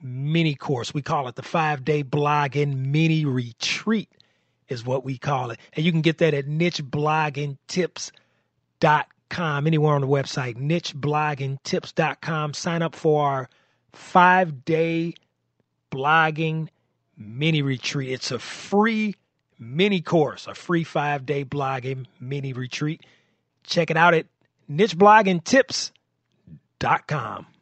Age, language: 30-49, English